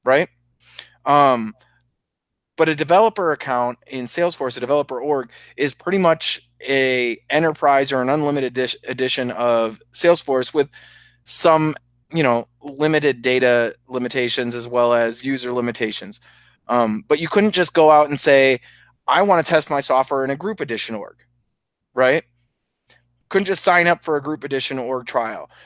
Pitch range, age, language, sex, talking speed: 120-150 Hz, 30-49, English, male, 155 wpm